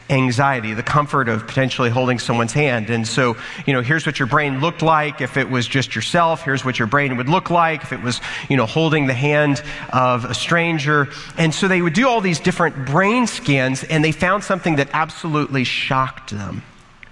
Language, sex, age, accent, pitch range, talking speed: English, male, 40-59, American, 125-165 Hz, 205 wpm